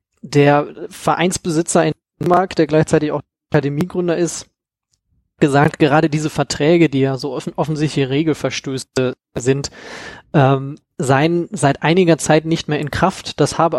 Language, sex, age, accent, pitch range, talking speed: German, male, 20-39, German, 140-155 Hz, 135 wpm